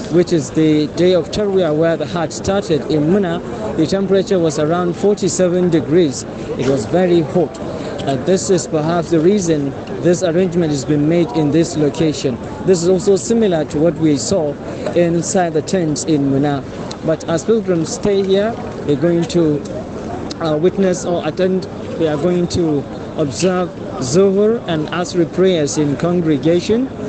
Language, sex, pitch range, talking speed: English, male, 150-180 Hz, 155 wpm